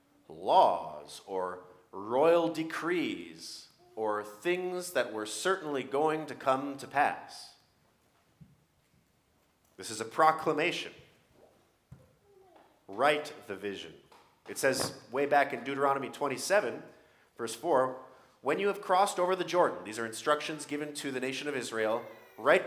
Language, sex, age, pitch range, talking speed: English, male, 40-59, 100-150 Hz, 125 wpm